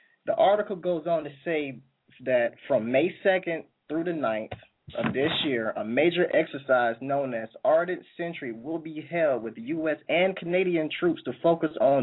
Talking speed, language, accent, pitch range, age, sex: 170 wpm, English, American, 130-175 Hz, 20-39, male